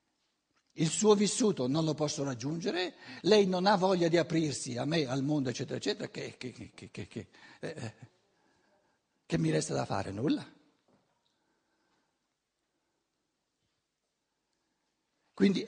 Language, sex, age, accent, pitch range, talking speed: Italian, male, 60-79, native, 130-180 Hz, 105 wpm